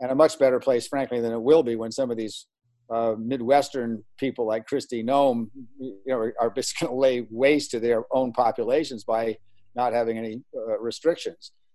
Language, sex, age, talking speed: English, male, 50-69, 195 wpm